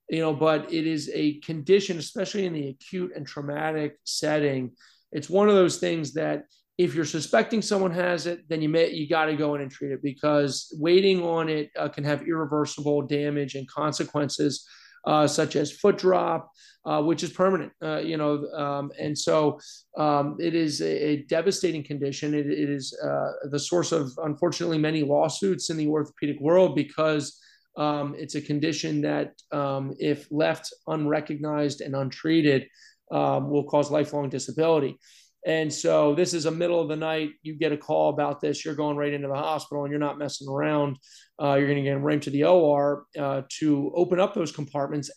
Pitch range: 145-160 Hz